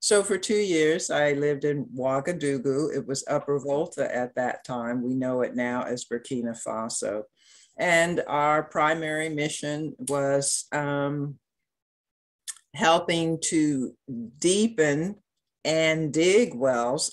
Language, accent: English, American